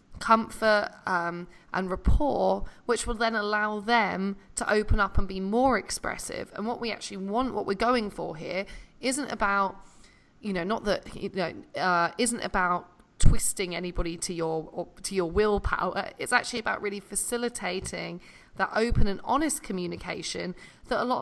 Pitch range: 180-220 Hz